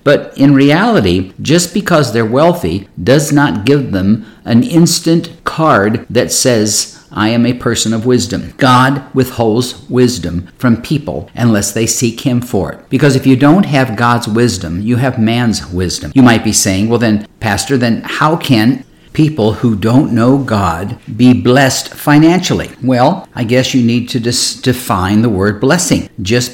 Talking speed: 165 wpm